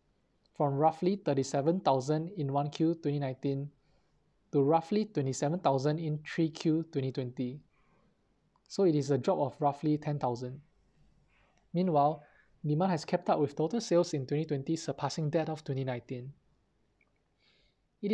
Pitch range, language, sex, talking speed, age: 140-175 Hz, English, male, 170 wpm, 20-39